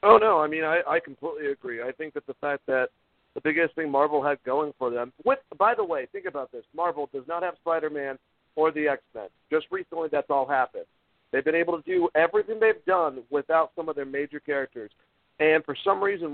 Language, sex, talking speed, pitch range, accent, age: English, male, 220 wpm, 140-210 Hz, American, 50-69